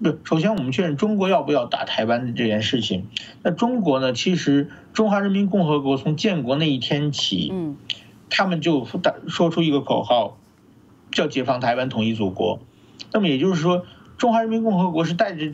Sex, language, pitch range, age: male, Chinese, 120-180 Hz, 50-69